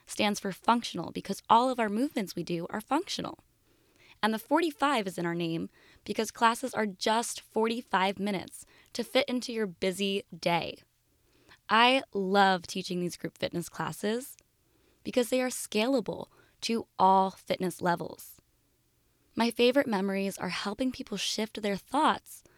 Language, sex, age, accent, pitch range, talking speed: English, female, 20-39, American, 195-250 Hz, 145 wpm